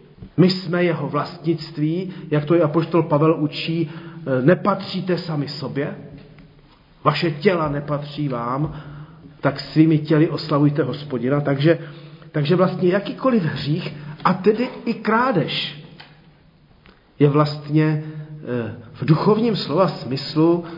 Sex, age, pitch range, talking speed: male, 40-59, 145-180 Hz, 105 wpm